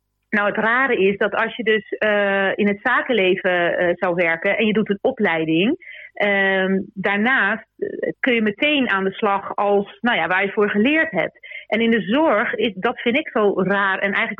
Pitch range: 195-245 Hz